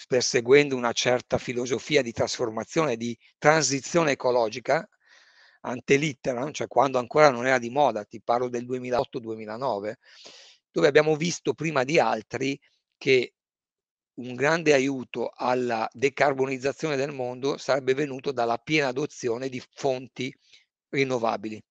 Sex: male